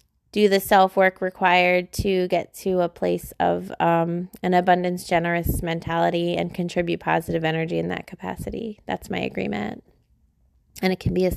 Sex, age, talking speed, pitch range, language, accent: female, 20-39, 160 wpm, 175-210 Hz, English, American